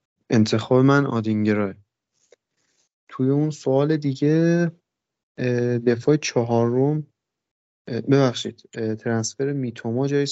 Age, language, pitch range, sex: 30-49, Persian, 105-125 Hz, male